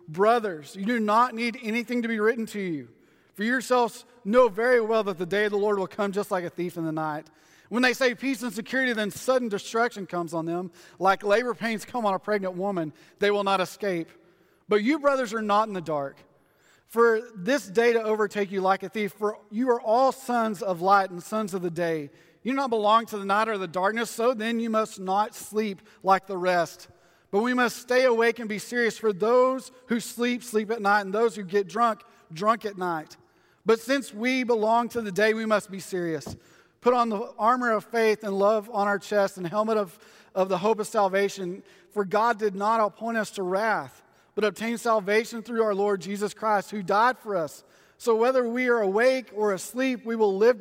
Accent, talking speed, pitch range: American, 220 wpm, 195-235 Hz